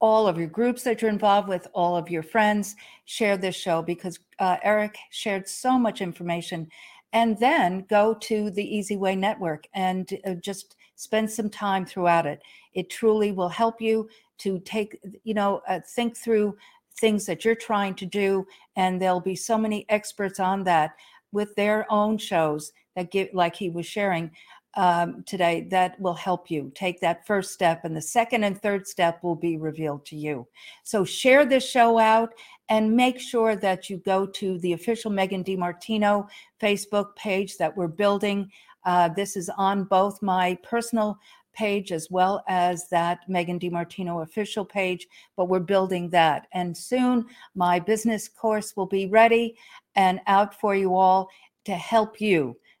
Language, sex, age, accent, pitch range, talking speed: English, female, 50-69, American, 180-215 Hz, 175 wpm